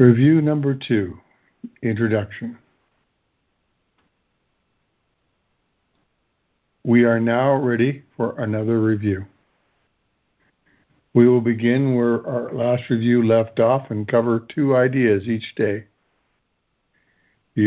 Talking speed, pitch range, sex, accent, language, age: 90 wpm, 105-130 Hz, male, American, English, 60-79